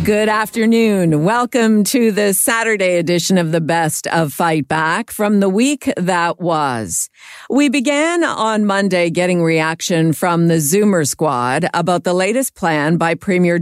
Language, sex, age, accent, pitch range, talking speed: English, female, 50-69, American, 155-200 Hz, 150 wpm